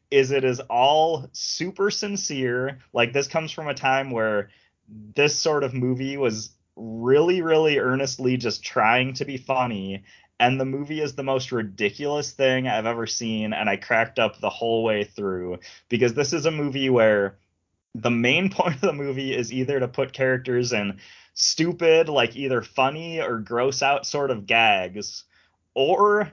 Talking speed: 165 wpm